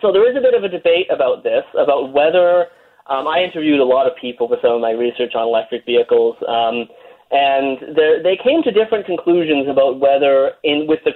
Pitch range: 125-190 Hz